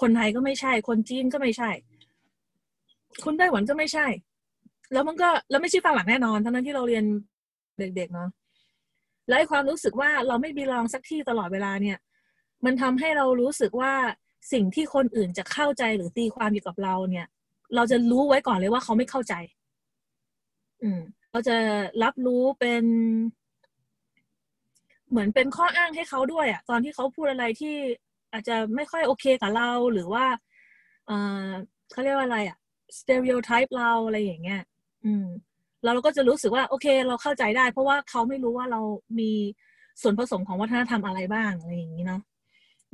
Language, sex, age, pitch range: Thai, female, 20-39, 215-270 Hz